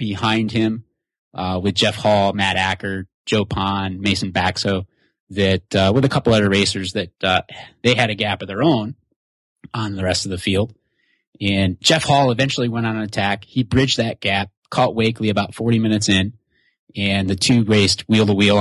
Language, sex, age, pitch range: English, male, 30-49, 100-115 Hz